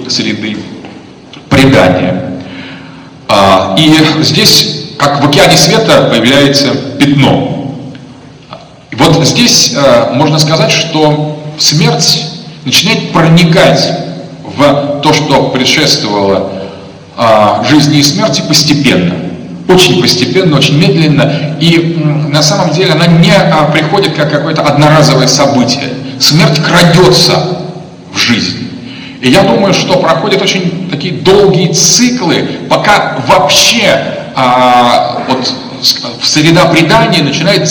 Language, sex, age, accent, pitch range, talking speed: Russian, male, 40-59, native, 135-165 Hz, 100 wpm